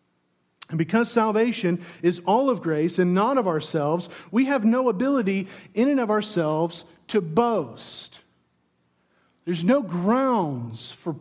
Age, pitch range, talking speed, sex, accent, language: 50-69, 170-240 Hz, 135 wpm, male, American, English